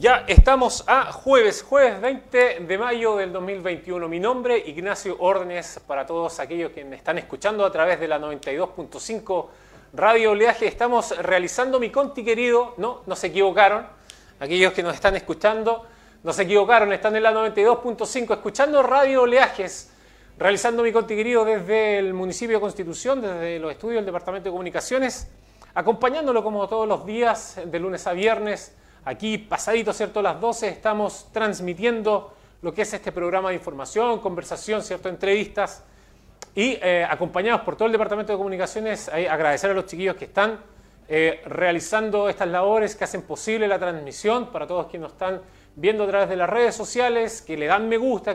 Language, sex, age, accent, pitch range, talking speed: Spanish, male, 30-49, Argentinian, 180-225 Hz, 165 wpm